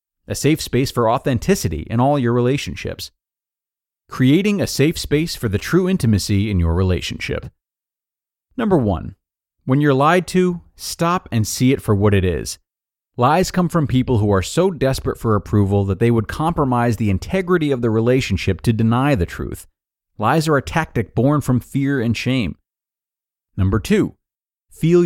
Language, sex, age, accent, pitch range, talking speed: English, male, 30-49, American, 100-140 Hz, 165 wpm